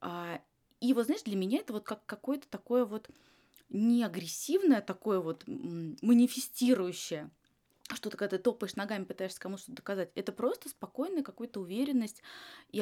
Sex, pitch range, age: female, 185-250 Hz, 20-39